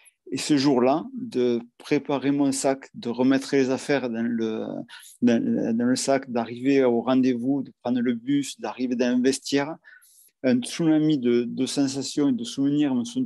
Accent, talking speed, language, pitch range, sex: French, 175 wpm, French, 125-145 Hz, male